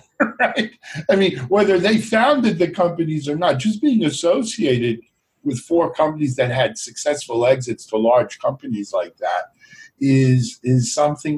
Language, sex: English, male